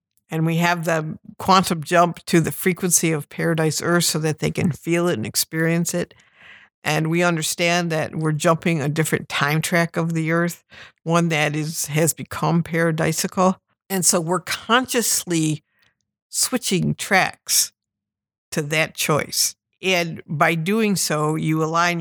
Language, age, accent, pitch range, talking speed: English, 60-79, American, 155-185 Hz, 150 wpm